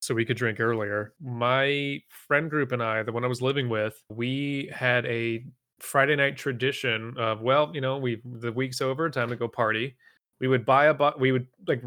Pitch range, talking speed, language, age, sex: 120-155 Hz, 210 wpm, English, 30-49, male